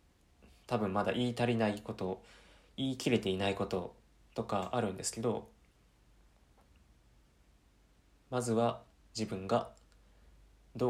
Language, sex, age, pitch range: Japanese, male, 20-39, 80-115 Hz